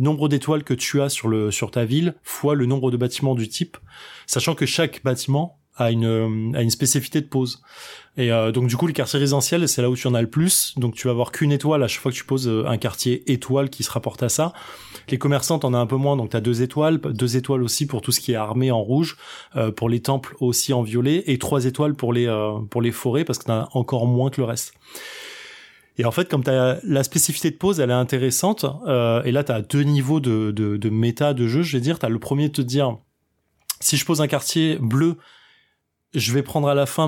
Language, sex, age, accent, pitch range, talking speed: French, male, 20-39, French, 120-150 Hz, 260 wpm